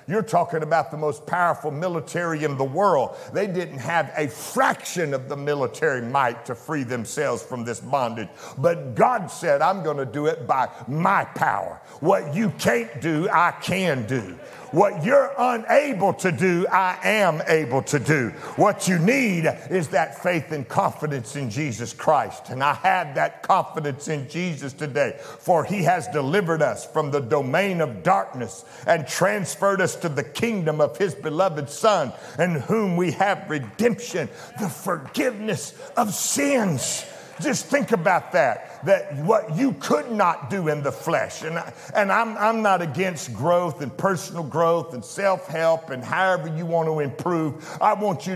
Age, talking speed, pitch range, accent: 60-79, 170 wpm, 150-200 Hz, American